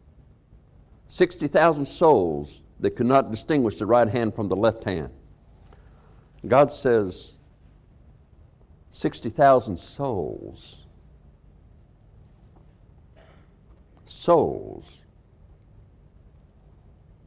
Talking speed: 65 wpm